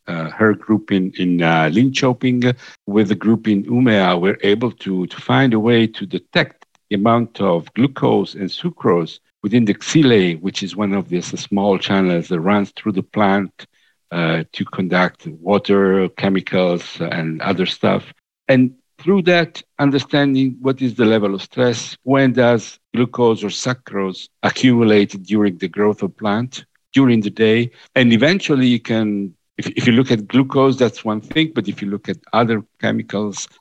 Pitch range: 95-120 Hz